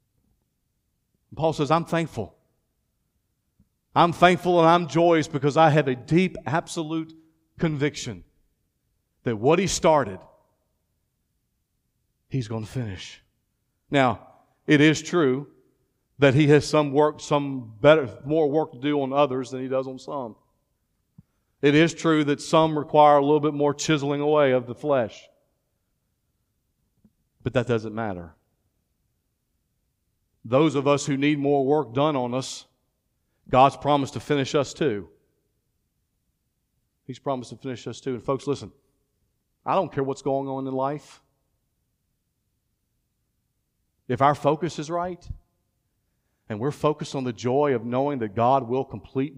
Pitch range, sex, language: 115-150 Hz, male, English